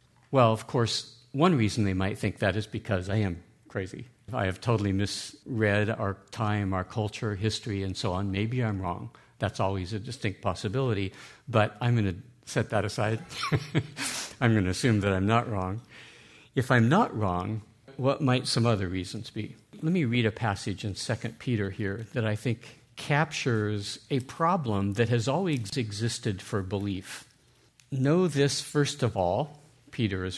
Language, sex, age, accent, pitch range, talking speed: English, male, 50-69, American, 105-125 Hz, 170 wpm